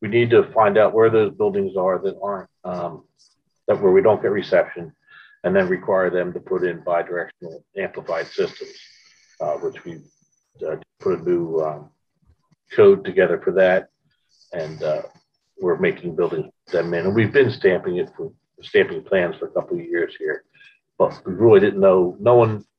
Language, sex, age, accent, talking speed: English, male, 50-69, American, 180 wpm